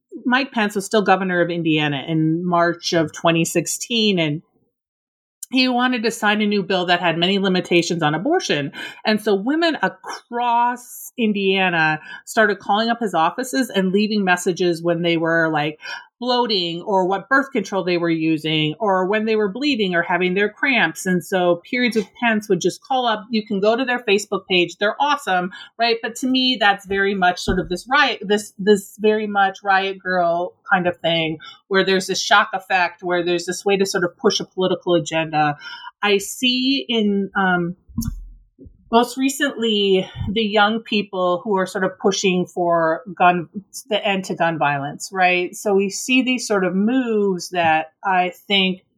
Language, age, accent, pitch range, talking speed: English, 40-59, American, 175-220 Hz, 180 wpm